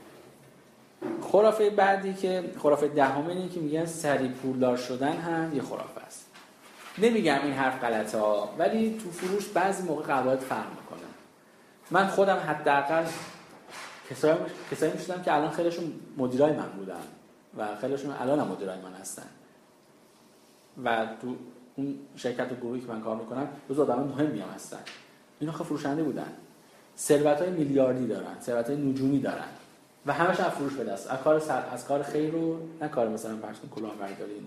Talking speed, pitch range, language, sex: 150 wpm, 125-160 Hz, Persian, male